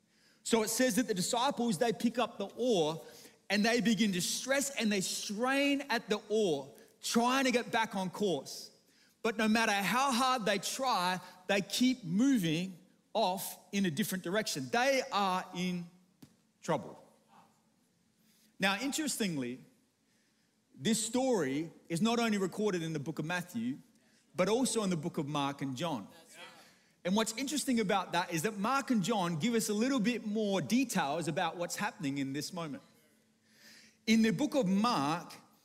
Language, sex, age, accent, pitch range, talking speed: English, male, 30-49, Australian, 180-235 Hz, 165 wpm